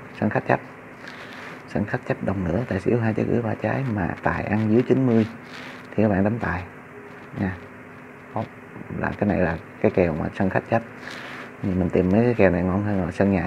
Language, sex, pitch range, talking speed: Vietnamese, male, 95-120 Hz, 215 wpm